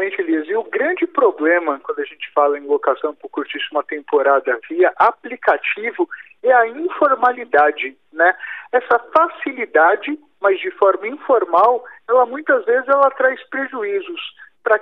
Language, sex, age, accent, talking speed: Portuguese, male, 50-69, Brazilian, 135 wpm